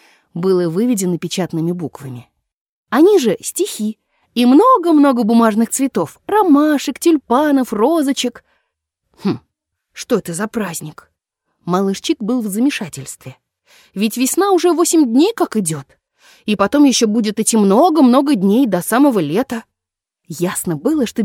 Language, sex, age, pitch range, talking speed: Russian, female, 20-39, 195-315 Hz, 120 wpm